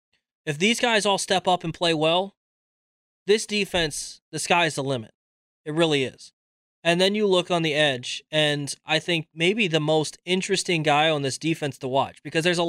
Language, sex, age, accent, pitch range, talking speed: English, male, 20-39, American, 130-165 Hz, 195 wpm